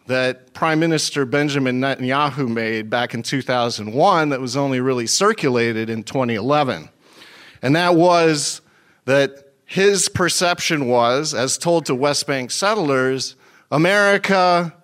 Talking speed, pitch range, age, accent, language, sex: 120 wpm, 125-165 Hz, 40-59, American, English, male